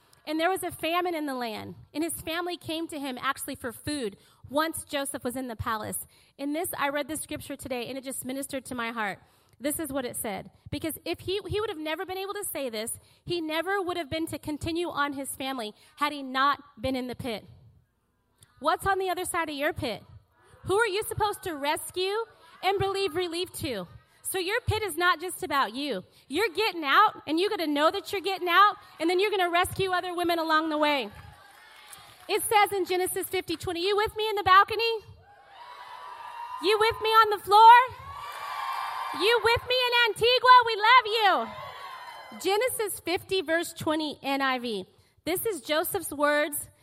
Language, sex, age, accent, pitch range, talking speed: English, female, 30-49, American, 285-395 Hz, 200 wpm